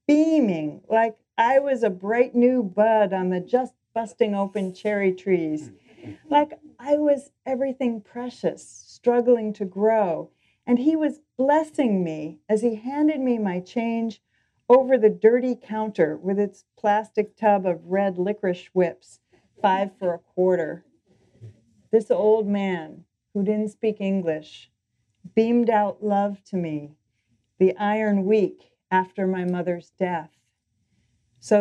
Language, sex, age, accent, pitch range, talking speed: English, female, 40-59, American, 180-225 Hz, 130 wpm